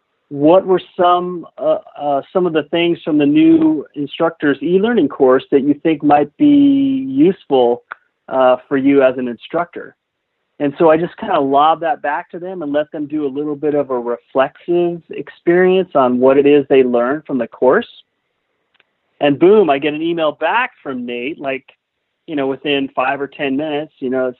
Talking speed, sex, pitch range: 195 wpm, male, 135-170 Hz